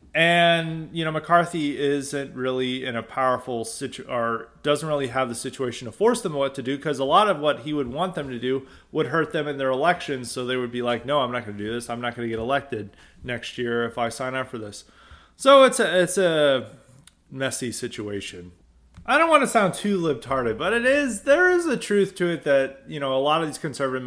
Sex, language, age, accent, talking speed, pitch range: male, English, 30-49, American, 240 wpm, 120-155 Hz